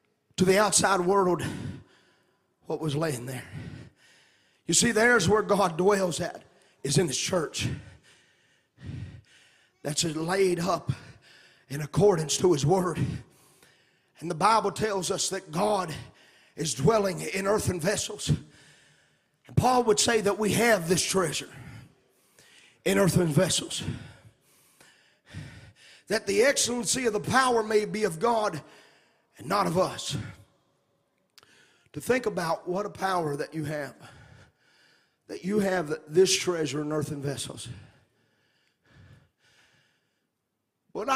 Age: 30-49